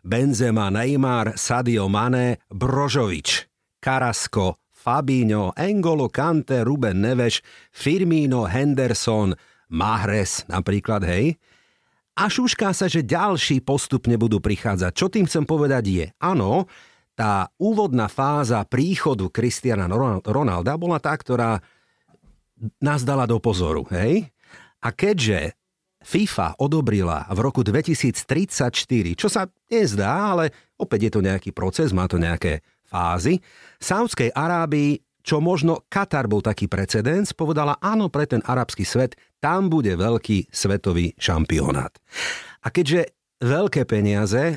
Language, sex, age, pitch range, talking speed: Slovak, male, 50-69, 105-155 Hz, 115 wpm